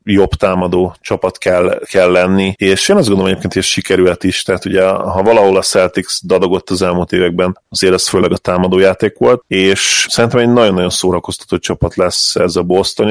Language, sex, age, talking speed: Hungarian, male, 30-49, 190 wpm